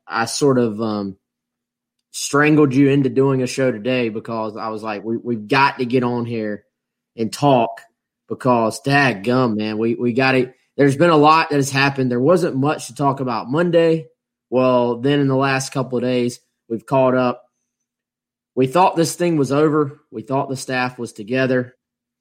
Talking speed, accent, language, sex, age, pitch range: 185 wpm, American, English, male, 20-39, 115-140 Hz